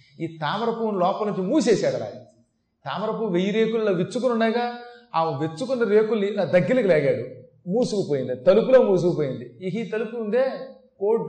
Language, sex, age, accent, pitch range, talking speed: Telugu, male, 30-49, native, 155-215 Hz, 135 wpm